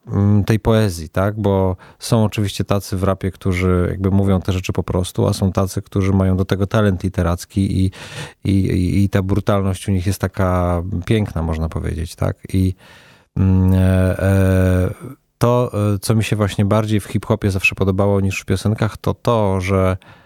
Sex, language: male, Polish